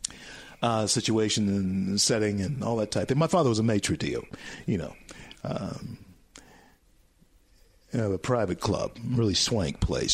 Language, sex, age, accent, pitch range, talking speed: English, male, 50-69, American, 100-125 Hz, 160 wpm